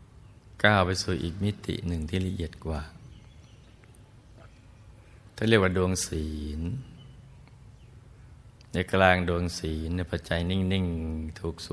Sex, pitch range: male, 85-105 Hz